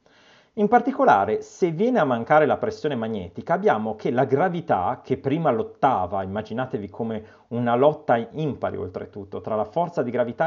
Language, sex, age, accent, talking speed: Italian, male, 40-59, native, 155 wpm